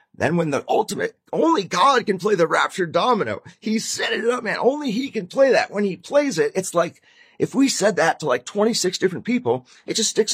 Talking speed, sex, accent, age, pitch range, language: 225 wpm, male, American, 30-49, 175-225 Hz, English